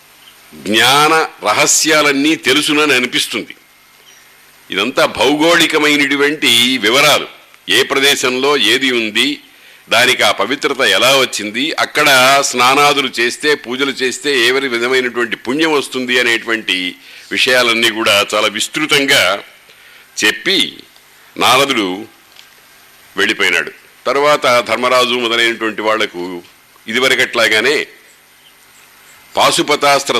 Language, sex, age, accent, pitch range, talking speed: Telugu, male, 50-69, native, 110-140 Hz, 80 wpm